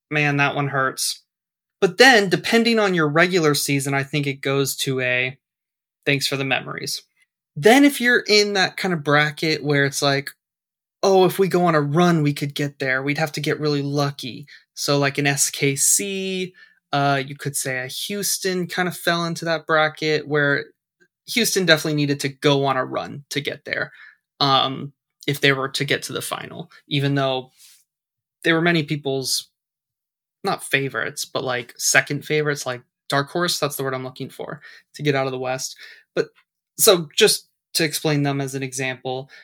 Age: 20-39